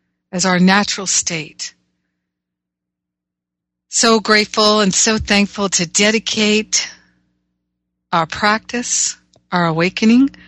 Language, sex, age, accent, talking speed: English, female, 60-79, American, 85 wpm